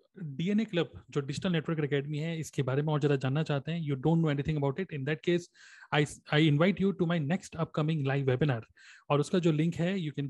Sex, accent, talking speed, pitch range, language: male, native, 245 wpm, 145-170 Hz, Hindi